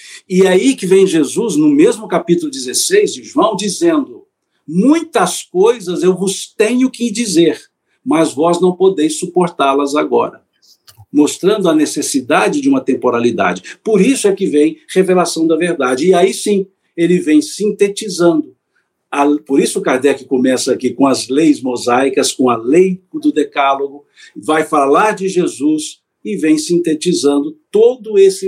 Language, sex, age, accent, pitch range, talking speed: Portuguese, male, 60-79, Brazilian, 150-195 Hz, 145 wpm